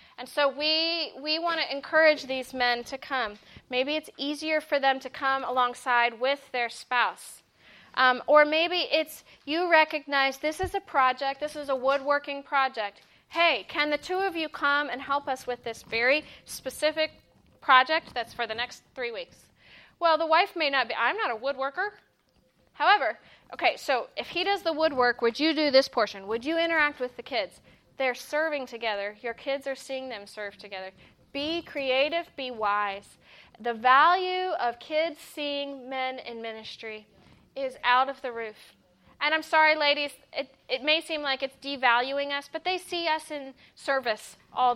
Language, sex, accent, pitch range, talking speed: English, female, American, 245-310 Hz, 175 wpm